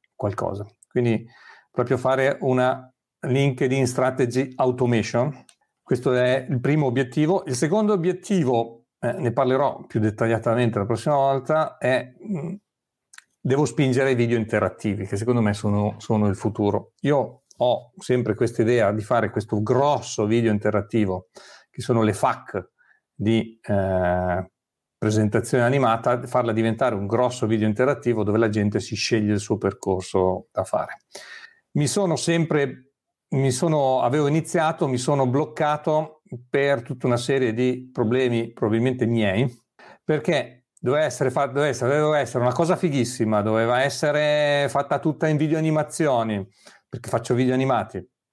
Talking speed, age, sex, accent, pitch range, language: 140 wpm, 40-59, male, native, 110-140 Hz, Italian